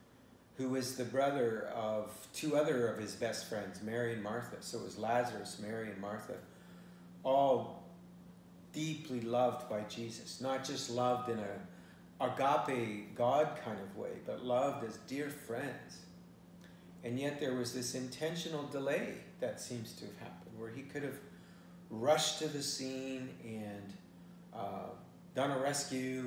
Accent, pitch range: American, 105-135 Hz